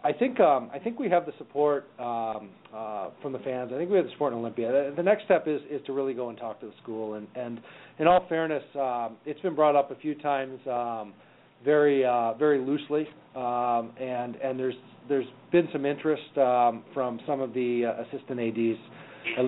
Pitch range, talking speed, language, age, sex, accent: 120-145 Hz, 215 wpm, English, 40-59, male, American